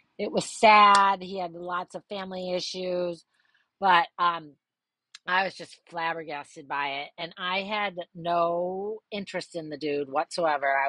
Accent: American